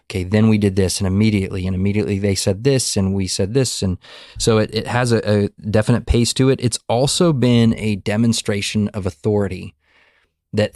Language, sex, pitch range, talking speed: English, male, 95-115 Hz, 195 wpm